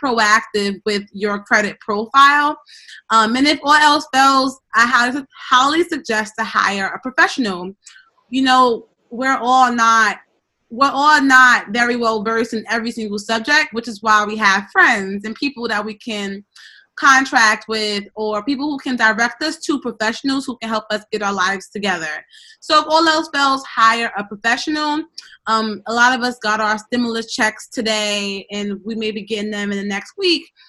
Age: 20-39